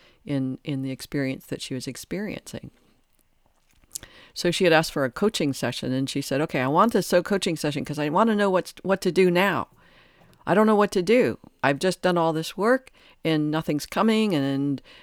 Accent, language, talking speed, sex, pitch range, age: American, English, 210 wpm, female, 135-175 Hz, 50-69